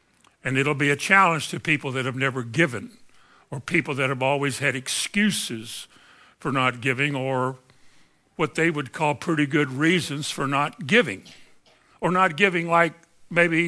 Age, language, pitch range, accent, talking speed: 60-79, English, 145-185 Hz, American, 160 wpm